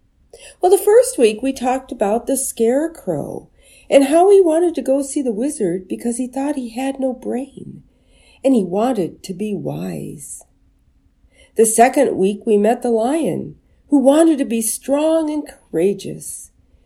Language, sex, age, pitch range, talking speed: English, female, 50-69, 210-285 Hz, 160 wpm